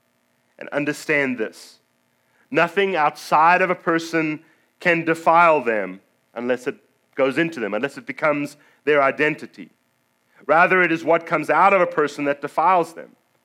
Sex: male